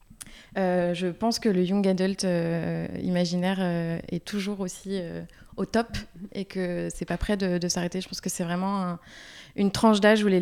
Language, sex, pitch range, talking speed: French, female, 175-205 Hz, 205 wpm